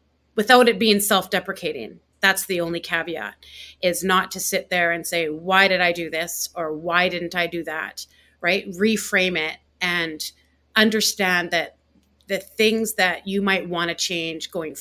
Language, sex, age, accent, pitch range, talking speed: English, female, 30-49, American, 165-195 Hz, 165 wpm